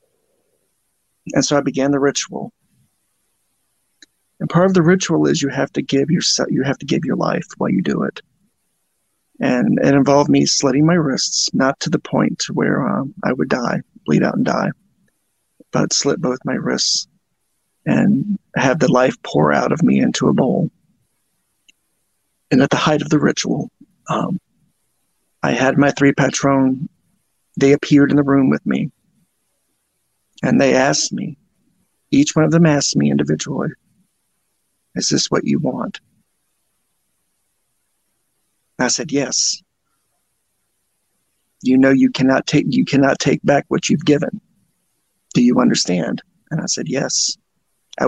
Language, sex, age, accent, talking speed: English, male, 30-49, American, 155 wpm